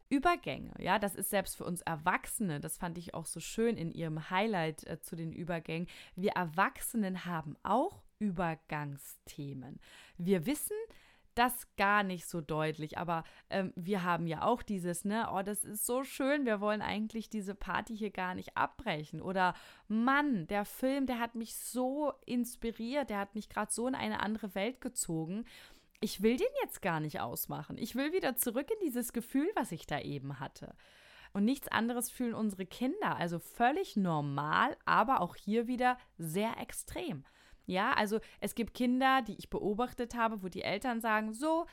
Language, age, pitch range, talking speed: German, 20-39, 170-235 Hz, 175 wpm